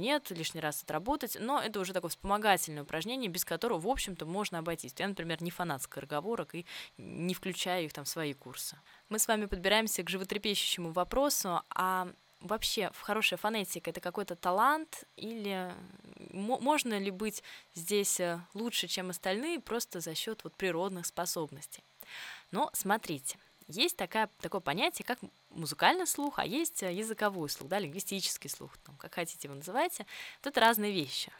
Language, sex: Russian, female